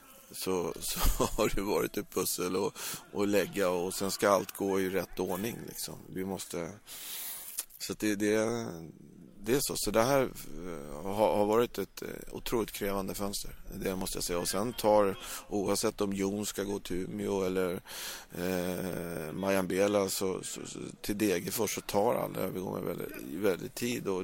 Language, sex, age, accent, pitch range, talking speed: English, male, 30-49, Swedish, 95-105 Hz, 170 wpm